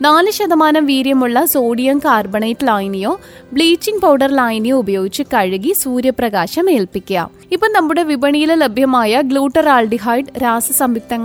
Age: 20-39